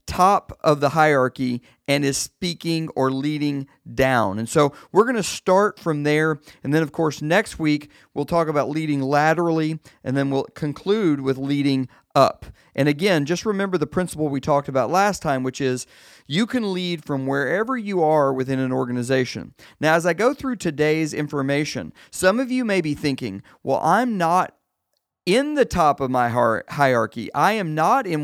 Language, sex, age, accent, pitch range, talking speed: English, male, 40-59, American, 135-185 Hz, 180 wpm